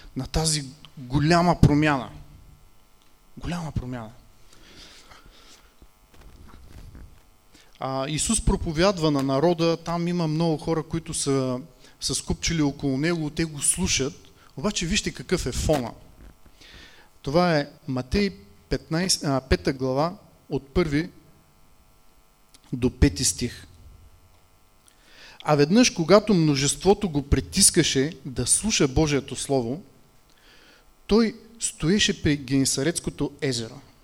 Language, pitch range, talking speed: English, 125-165 Hz, 95 wpm